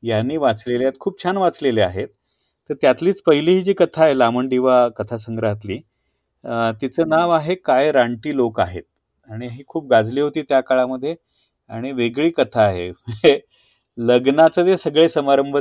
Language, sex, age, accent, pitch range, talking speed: Marathi, male, 40-59, native, 125-160 Hz, 150 wpm